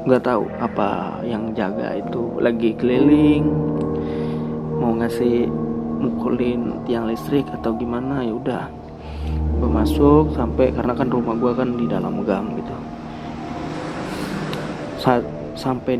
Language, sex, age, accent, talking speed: Indonesian, male, 20-39, native, 115 wpm